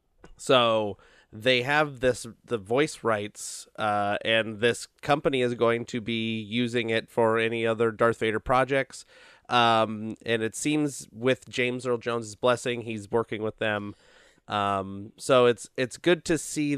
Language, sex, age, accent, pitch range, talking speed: English, male, 30-49, American, 105-125 Hz, 155 wpm